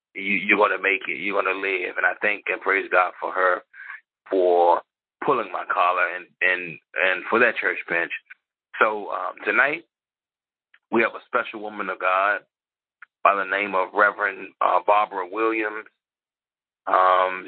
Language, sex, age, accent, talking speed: English, male, 30-49, American, 165 wpm